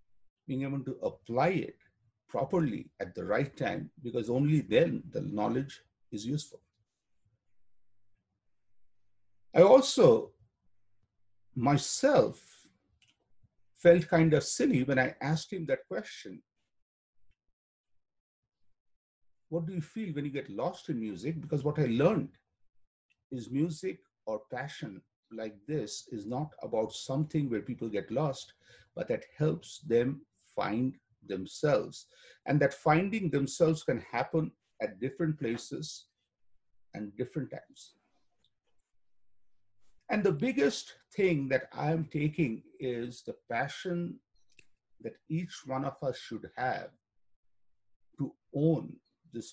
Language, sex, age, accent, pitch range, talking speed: English, male, 50-69, Indian, 100-150 Hz, 115 wpm